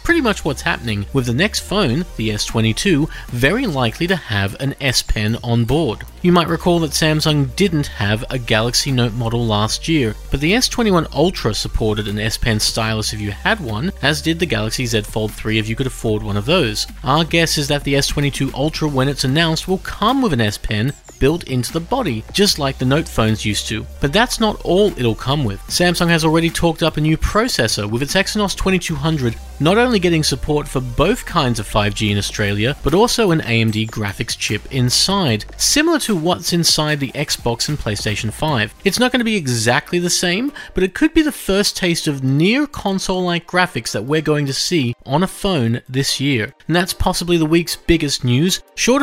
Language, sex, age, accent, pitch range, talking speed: English, male, 30-49, Australian, 120-175 Hz, 205 wpm